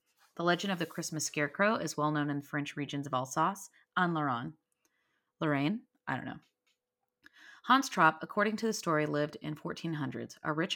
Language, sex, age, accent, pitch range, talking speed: English, female, 30-49, American, 140-170 Hz, 180 wpm